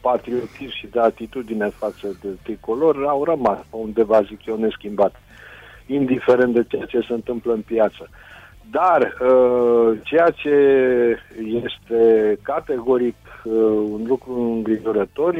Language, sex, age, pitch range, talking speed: Romanian, male, 50-69, 110-130 Hz, 120 wpm